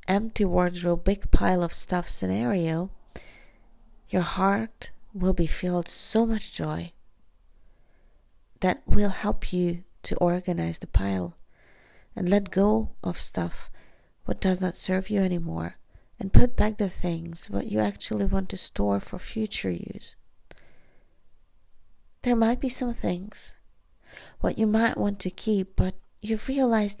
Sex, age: female, 30-49